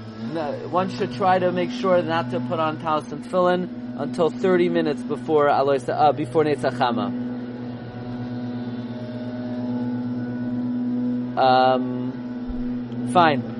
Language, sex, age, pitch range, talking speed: English, male, 30-49, 120-200 Hz, 100 wpm